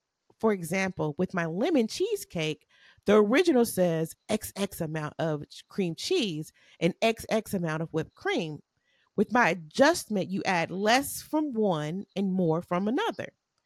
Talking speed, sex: 140 wpm, female